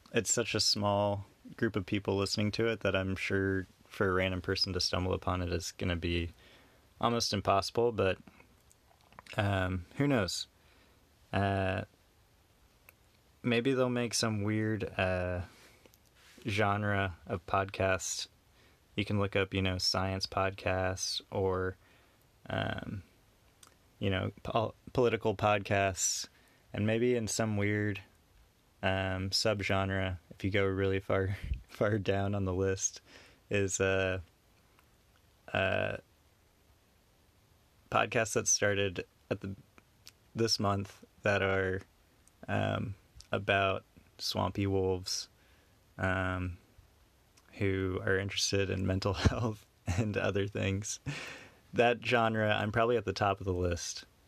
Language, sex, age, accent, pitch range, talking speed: English, male, 20-39, American, 95-105 Hz, 125 wpm